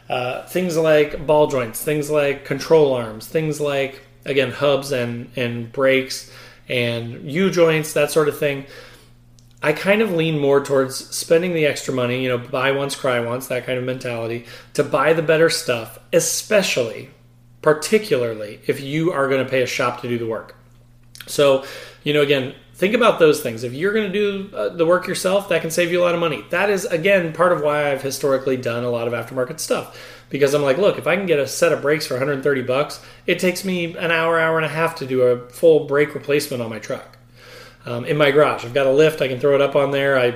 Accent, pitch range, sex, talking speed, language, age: American, 125-155 Hz, male, 220 wpm, English, 30-49